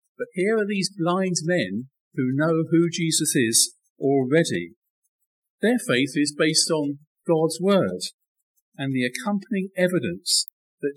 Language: English